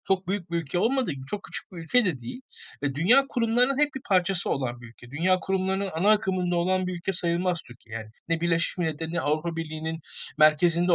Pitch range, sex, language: 155-205 Hz, male, Turkish